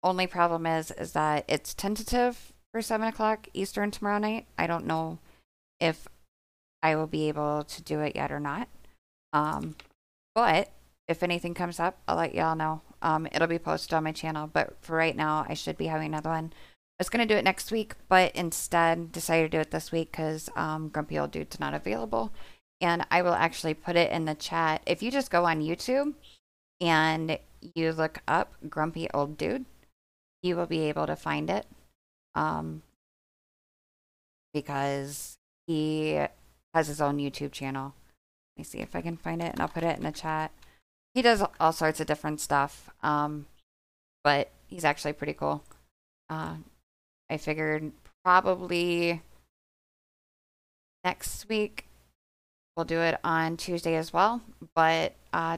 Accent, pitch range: American, 140-175 Hz